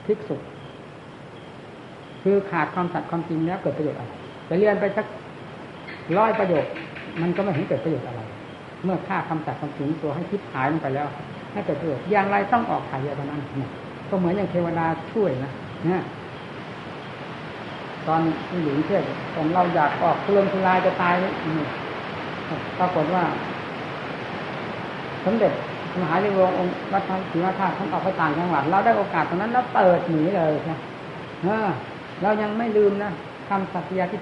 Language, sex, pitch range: Thai, female, 150-190 Hz